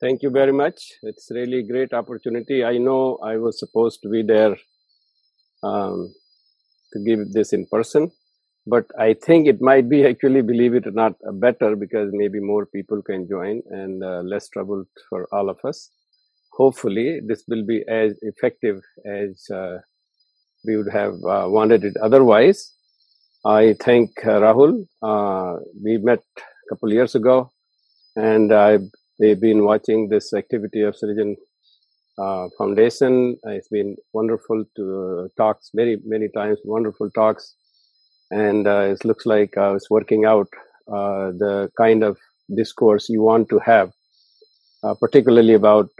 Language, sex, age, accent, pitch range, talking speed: English, male, 50-69, Indian, 105-120 Hz, 155 wpm